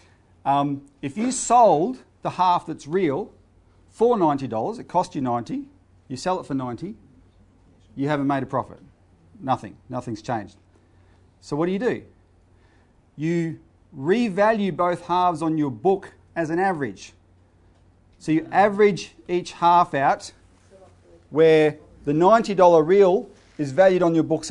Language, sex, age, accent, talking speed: English, male, 40-59, Australian, 140 wpm